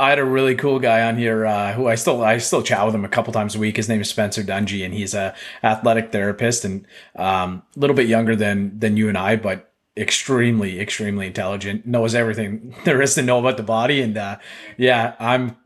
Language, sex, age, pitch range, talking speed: English, male, 30-49, 105-125 Hz, 230 wpm